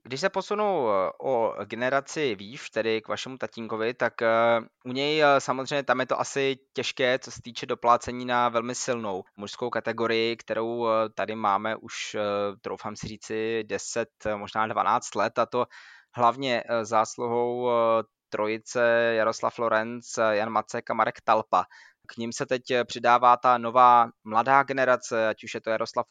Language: Czech